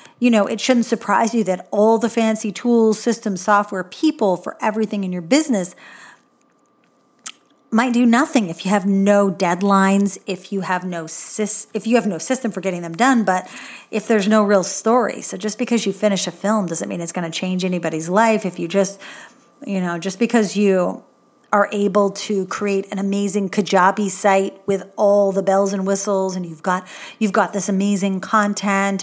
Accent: American